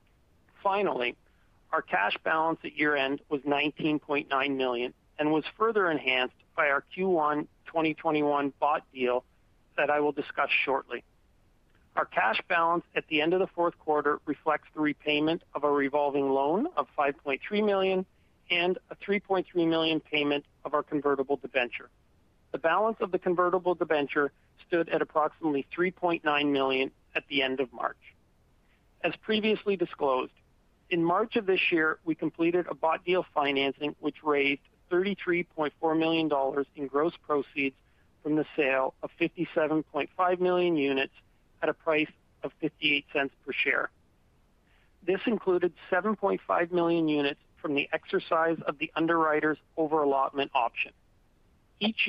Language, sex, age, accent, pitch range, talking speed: English, male, 40-59, American, 140-175 Hz, 140 wpm